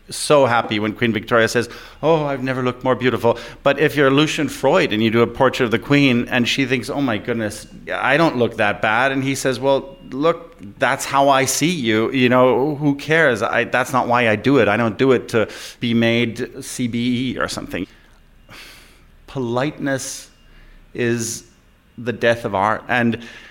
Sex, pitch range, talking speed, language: male, 110-135 Hz, 185 wpm, English